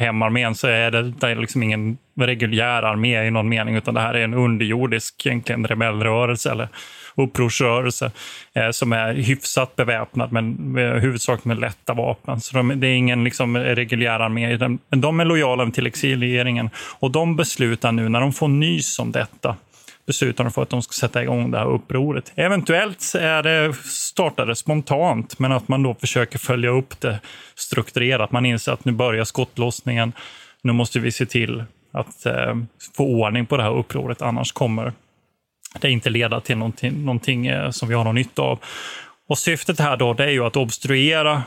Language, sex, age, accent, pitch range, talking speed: Swedish, male, 20-39, native, 115-135 Hz, 175 wpm